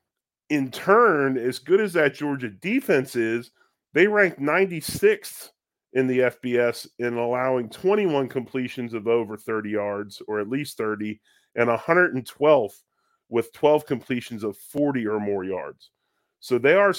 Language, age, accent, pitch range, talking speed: English, 30-49, American, 110-140 Hz, 140 wpm